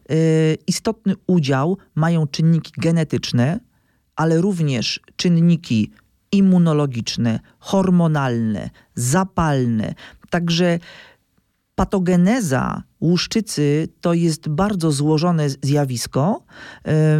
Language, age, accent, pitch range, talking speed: Polish, 40-59, native, 145-190 Hz, 65 wpm